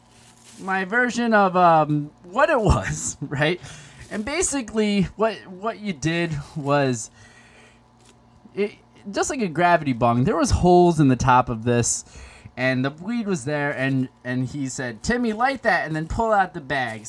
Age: 20-39